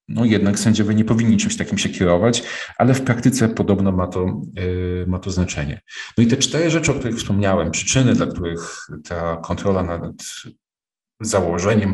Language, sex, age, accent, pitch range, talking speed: Polish, male, 40-59, native, 95-115 Hz, 160 wpm